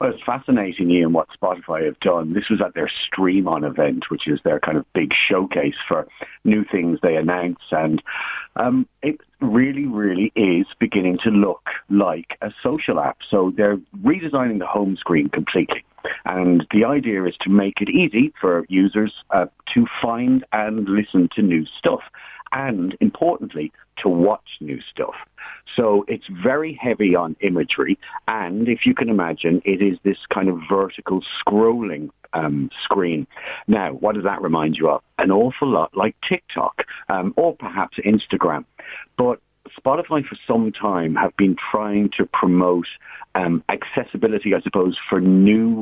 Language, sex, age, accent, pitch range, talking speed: English, male, 50-69, British, 90-125 Hz, 160 wpm